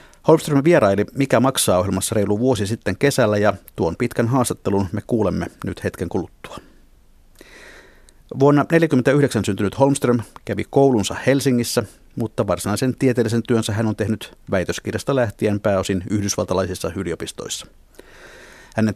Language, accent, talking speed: Finnish, native, 115 wpm